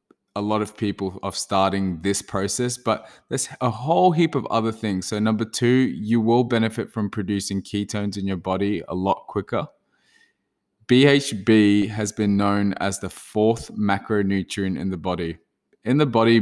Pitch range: 95-115 Hz